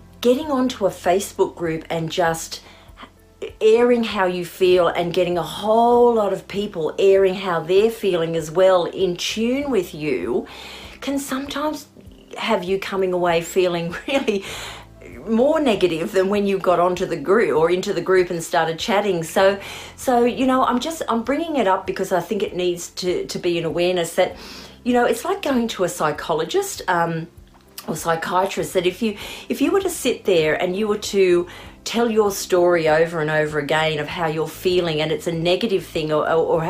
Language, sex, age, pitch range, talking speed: English, female, 40-59, 170-225 Hz, 190 wpm